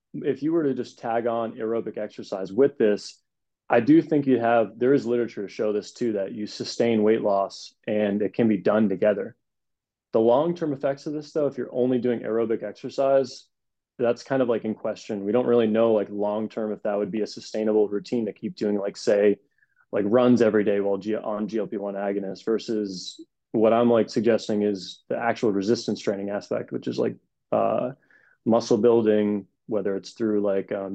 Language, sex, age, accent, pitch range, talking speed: English, male, 20-39, American, 100-120 Hz, 195 wpm